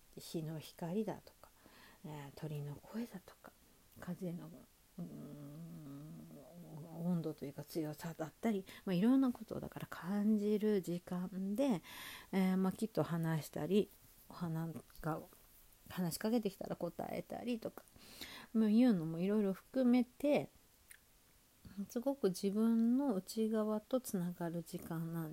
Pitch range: 160-215 Hz